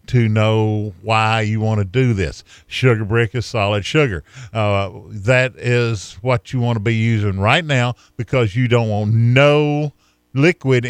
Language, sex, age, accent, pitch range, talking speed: English, male, 50-69, American, 90-120 Hz, 165 wpm